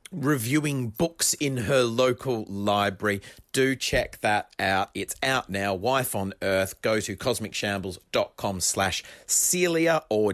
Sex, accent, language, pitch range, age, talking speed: male, Australian, English, 100-140 Hz, 40-59, 135 wpm